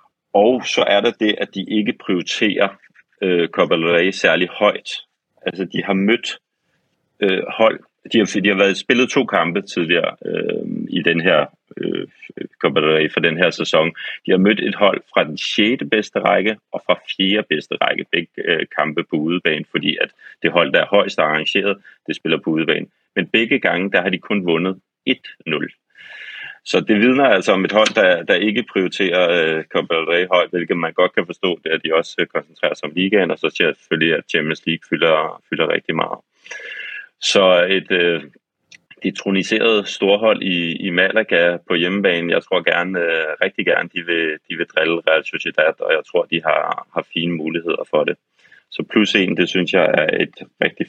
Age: 30-49